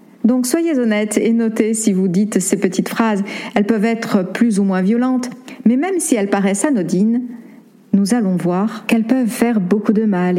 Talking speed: 190 wpm